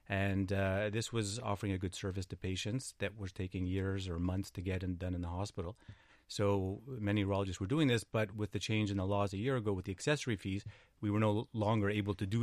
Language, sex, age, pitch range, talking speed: English, male, 30-49, 95-110 Hz, 240 wpm